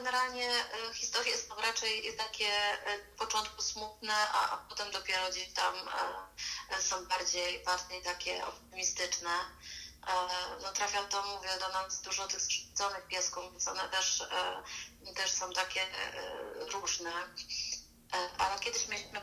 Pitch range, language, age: 185-210 Hz, Polish, 30-49